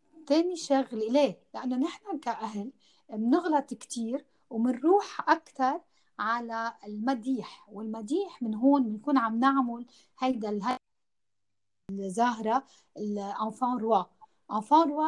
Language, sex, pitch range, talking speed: Arabic, female, 210-270 Hz, 90 wpm